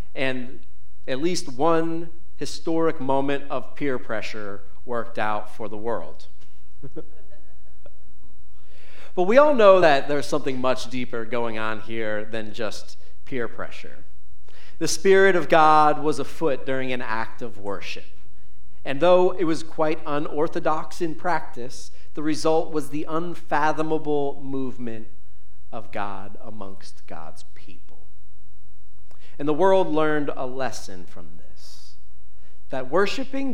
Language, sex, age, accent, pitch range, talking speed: English, male, 40-59, American, 95-140 Hz, 125 wpm